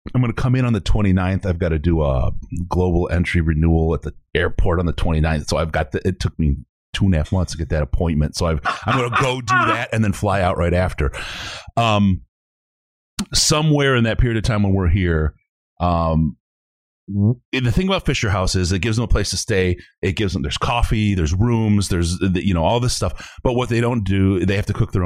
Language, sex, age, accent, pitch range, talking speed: English, male, 30-49, American, 80-110 Hz, 240 wpm